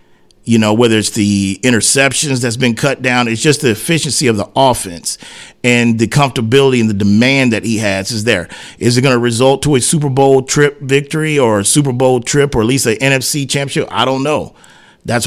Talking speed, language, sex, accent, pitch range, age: 210 wpm, English, male, American, 110-135 Hz, 40-59